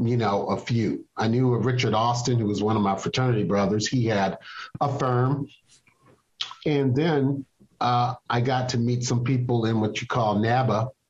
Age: 50-69